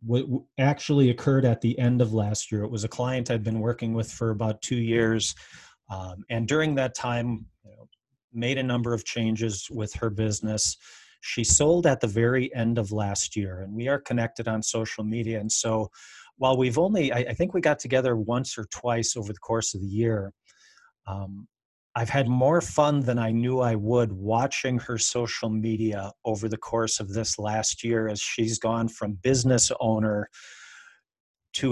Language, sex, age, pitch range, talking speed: English, male, 40-59, 110-130 Hz, 190 wpm